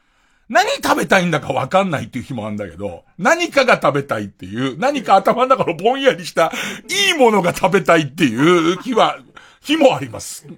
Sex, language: male, Japanese